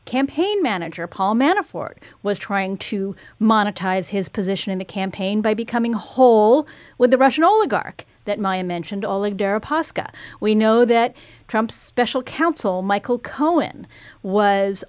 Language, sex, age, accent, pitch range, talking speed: English, female, 40-59, American, 195-295 Hz, 135 wpm